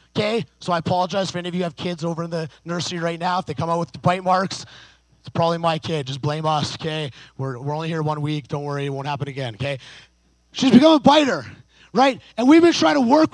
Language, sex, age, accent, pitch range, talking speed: English, male, 30-49, American, 150-245 Hz, 255 wpm